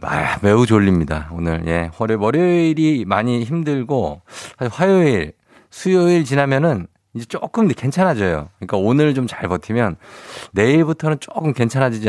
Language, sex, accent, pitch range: Korean, male, native, 100-140 Hz